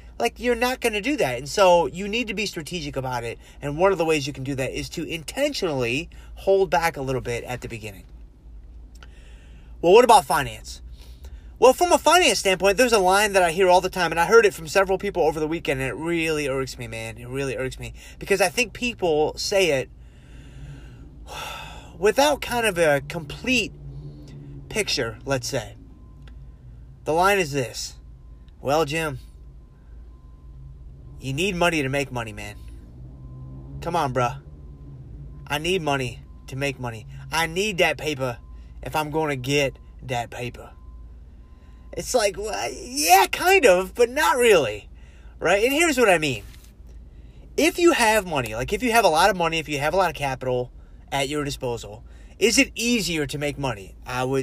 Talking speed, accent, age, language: 180 wpm, American, 30-49, English